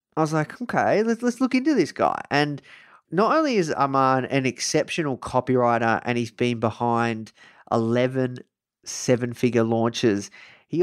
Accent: Australian